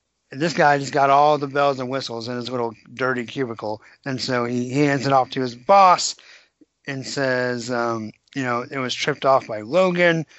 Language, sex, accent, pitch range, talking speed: English, male, American, 125-165 Hz, 200 wpm